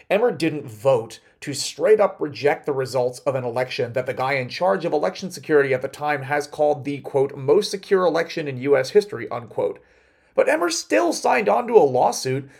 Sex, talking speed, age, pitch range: male, 195 wpm, 30-49, 130-200 Hz